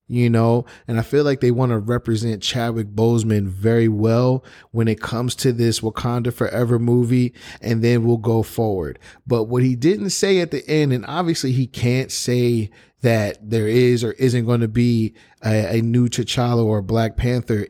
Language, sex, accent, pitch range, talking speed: English, male, American, 115-125 Hz, 185 wpm